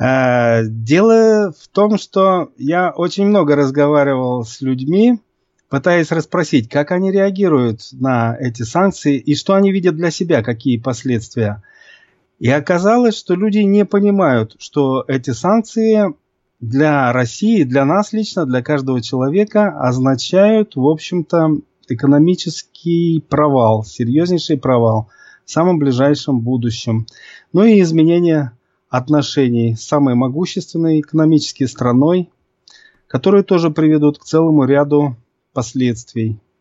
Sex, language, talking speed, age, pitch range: male, English, 115 wpm, 30-49, 130-180 Hz